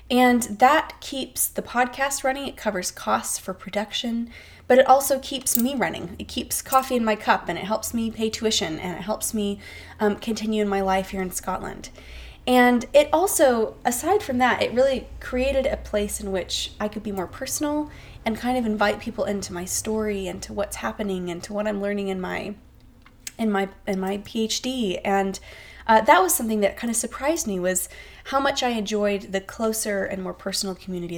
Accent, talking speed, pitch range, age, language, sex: American, 200 wpm, 195-245 Hz, 20-39, English, female